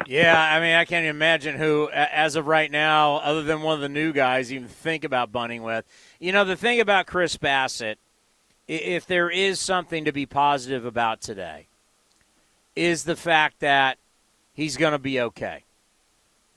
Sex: male